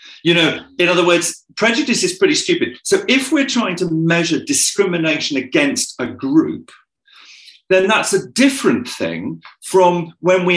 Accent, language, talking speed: British, English, 155 wpm